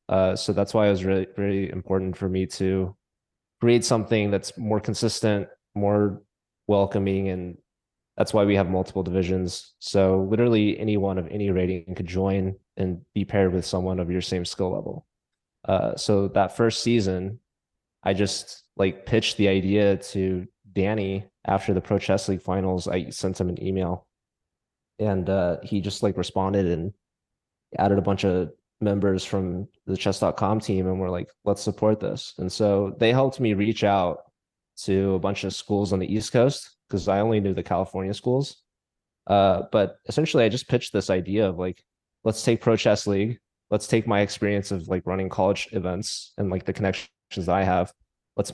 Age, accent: 20-39, American